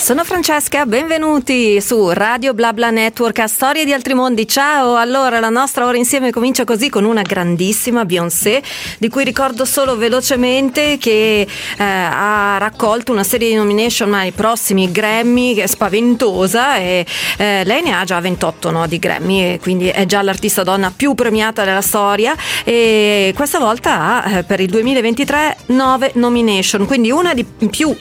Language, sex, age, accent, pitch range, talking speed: Italian, female, 40-59, native, 195-250 Hz, 165 wpm